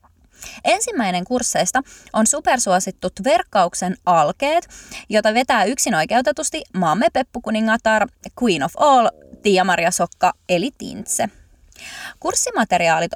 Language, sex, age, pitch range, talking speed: Finnish, female, 20-39, 185-285 Hz, 90 wpm